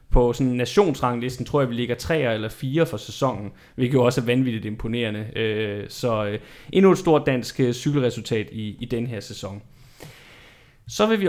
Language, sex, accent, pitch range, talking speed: Danish, male, native, 120-155 Hz, 165 wpm